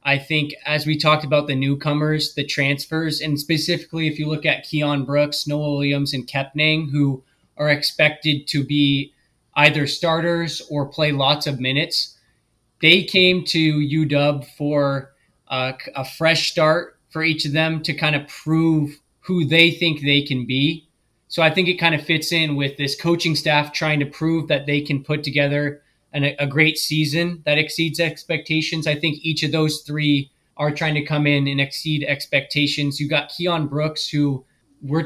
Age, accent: 20-39, American